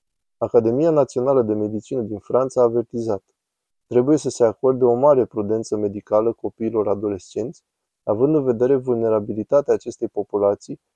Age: 20-39